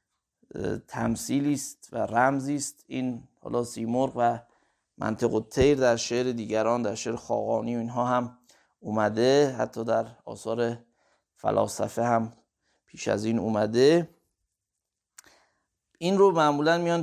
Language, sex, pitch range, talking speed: Persian, male, 115-135 Hz, 115 wpm